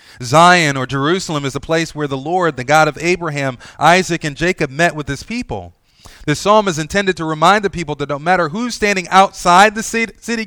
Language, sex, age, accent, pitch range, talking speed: English, male, 30-49, American, 110-150 Hz, 205 wpm